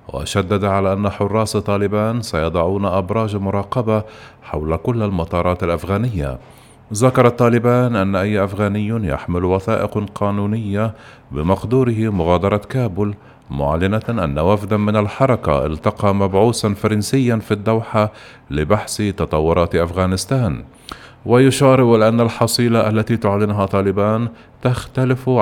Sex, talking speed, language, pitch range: male, 100 wpm, Arabic, 95-110 Hz